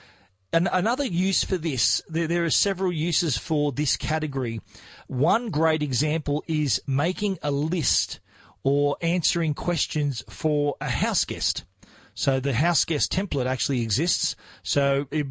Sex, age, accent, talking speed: male, 40-59, Australian, 135 wpm